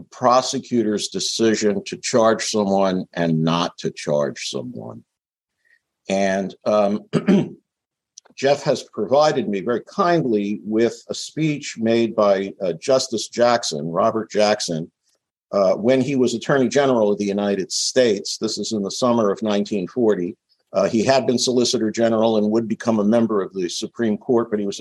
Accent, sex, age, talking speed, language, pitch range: American, male, 50-69, 150 wpm, English, 105-135 Hz